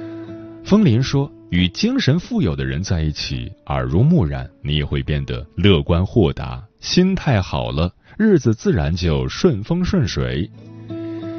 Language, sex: Chinese, male